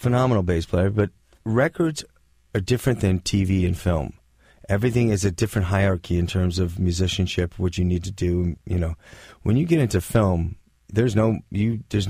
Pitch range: 90-110 Hz